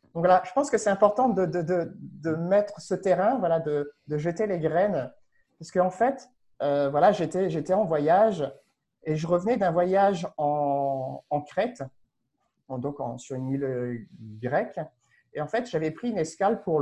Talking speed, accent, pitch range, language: 190 wpm, French, 145-200 Hz, English